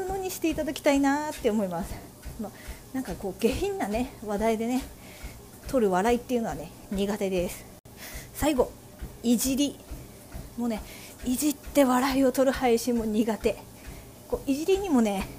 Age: 40-59